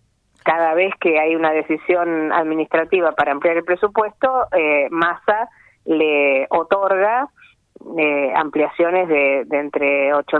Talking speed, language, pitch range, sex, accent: 120 wpm, Spanish, 145-175 Hz, female, Argentinian